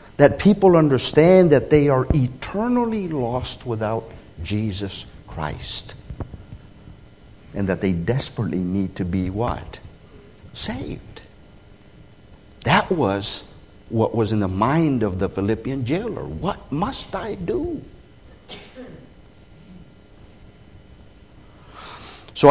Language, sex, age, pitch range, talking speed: English, male, 50-69, 100-130 Hz, 95 wpm